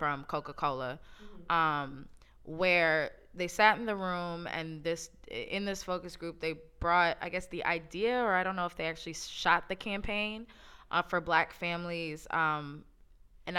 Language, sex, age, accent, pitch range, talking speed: English, female, 20-39, American, 160-210 Hz, 165 wpm